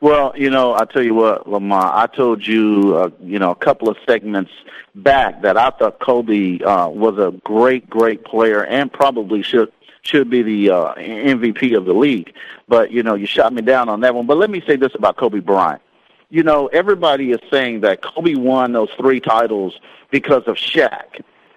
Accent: American